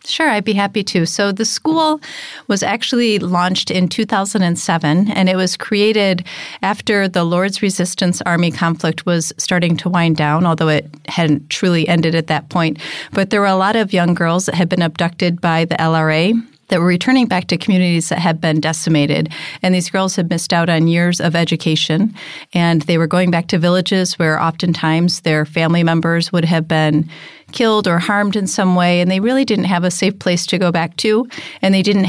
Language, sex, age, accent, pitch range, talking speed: English, female, 40-59, American, 165-185 Hz, 200 wpm